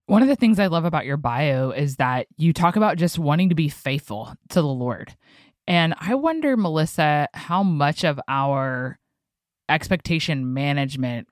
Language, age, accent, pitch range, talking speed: English, 20-39, American, 130-155 Hz, 170 wpm